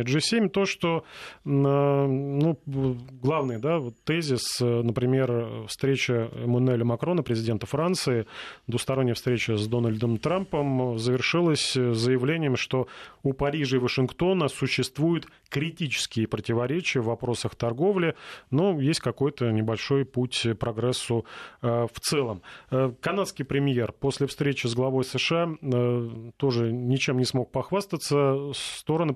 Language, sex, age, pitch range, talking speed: Russian, male, 30-49, 120-145 Hz, 105 wpm